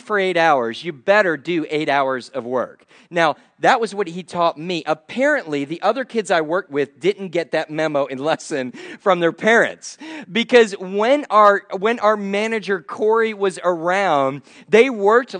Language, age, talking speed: English, 40-59, 170 wpm